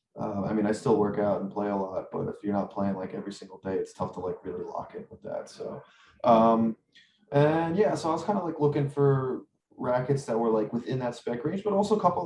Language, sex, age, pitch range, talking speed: English, male, 20-39, 100-115 Hz, 260 wpm